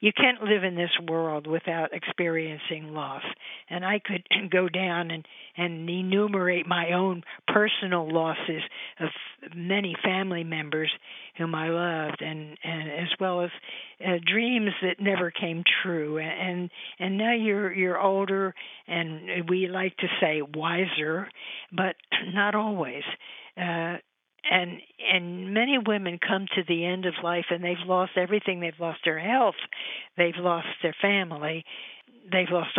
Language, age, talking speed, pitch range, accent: English, 50-69, 145 wpm, 170-200 Hz, American